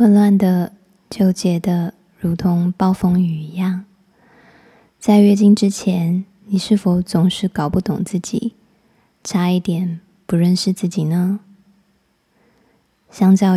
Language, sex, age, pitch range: Chinese, female, 20-39, 180-210 Hz